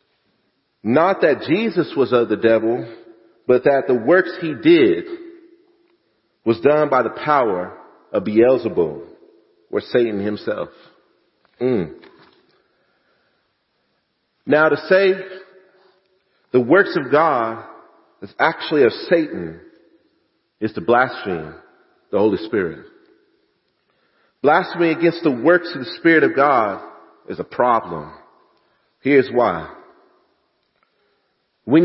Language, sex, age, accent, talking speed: English, male, 40-59, American, 105 wpm